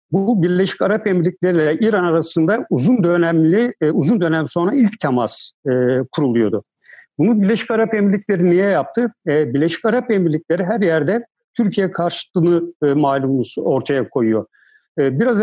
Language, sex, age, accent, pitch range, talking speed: Turkish, male, 60-79, native, 155-205 Hz, 125 wpm